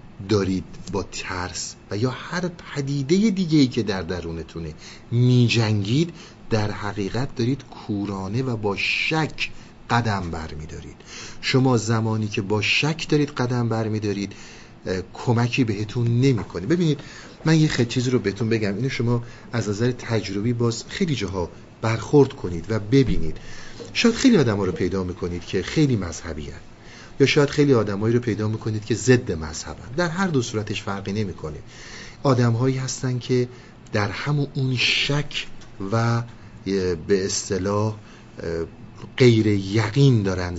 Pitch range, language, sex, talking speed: 100-130 Hz, Persian, male, 140 wpm